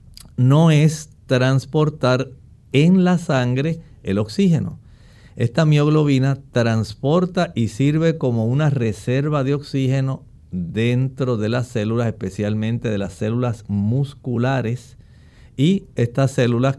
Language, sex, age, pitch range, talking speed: Spanish, male, 50-69, 115-150 Hz, 105 wpm